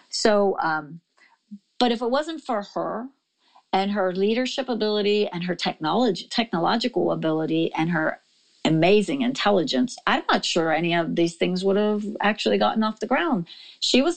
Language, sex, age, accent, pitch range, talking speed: English, female, 50-69, American, 160-230 Hz, 155 wpm